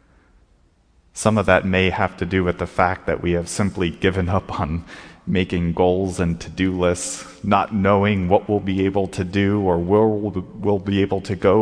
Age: 30-49